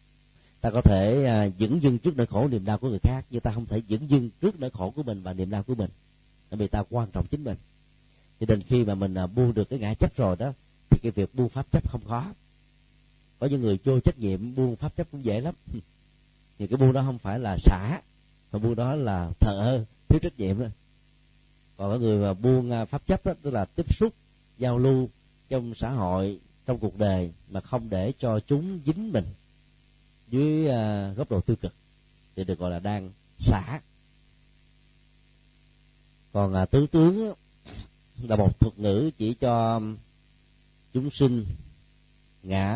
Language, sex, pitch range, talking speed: Vietnamese, male, 100-135 Hz, 190 wpm